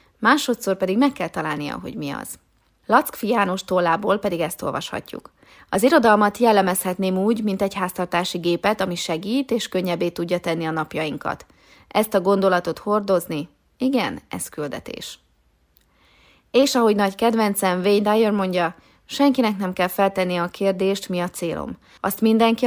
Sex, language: female, Hungarian